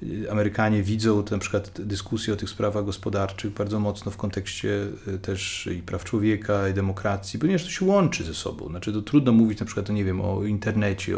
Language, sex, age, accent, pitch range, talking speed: Polish, male, 30-49, native, 105-120 Hz, 175 wpm